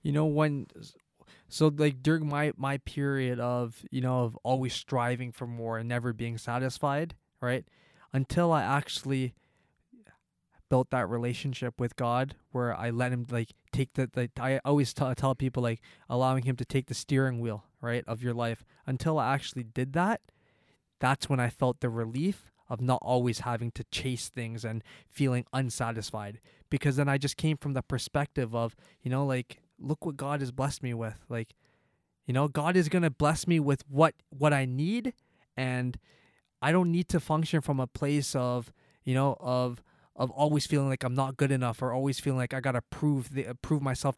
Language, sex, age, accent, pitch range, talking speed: English, male, 20-39, American, 125-145 Hz, 185 wpm